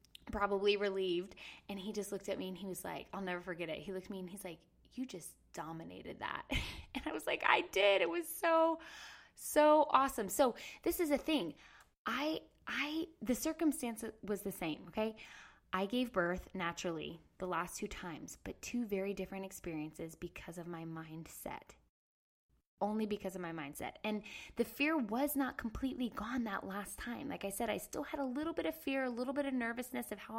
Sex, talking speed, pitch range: female, 200 wpm, 185-245 Hz